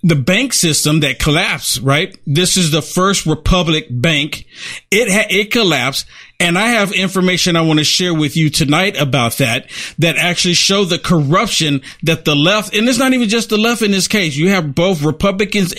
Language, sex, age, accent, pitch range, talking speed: English, male, 50-69, American, 165-215 Hz, 195 wpm